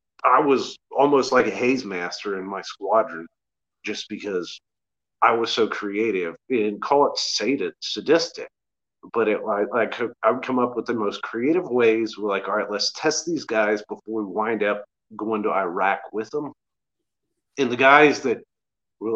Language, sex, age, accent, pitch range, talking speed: English, male, 40-59, American, 105-130 Hz, 165 wpm